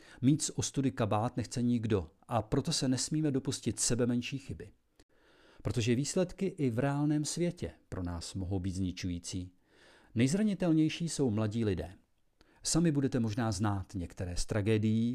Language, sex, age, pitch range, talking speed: Czech, male, 40-59, 105-145 Hz, 145 wpm